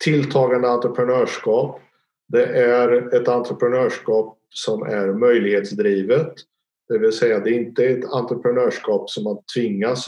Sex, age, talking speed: male, 50-69, 125 wpm